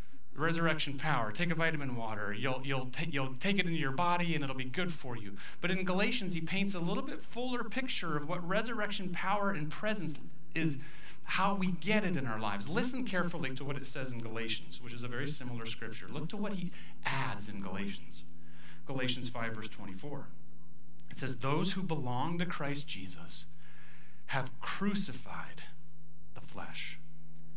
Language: English